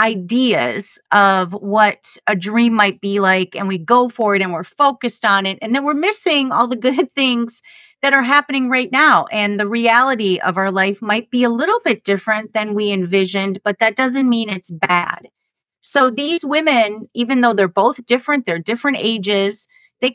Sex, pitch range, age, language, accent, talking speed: female, 195-255 Hz, 30-49, English, American, 190 wpm